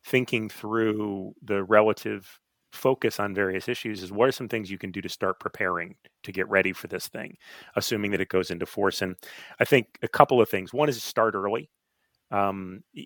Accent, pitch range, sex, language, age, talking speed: American, 95-110 Hz, male, English, 30-49, 200 wpm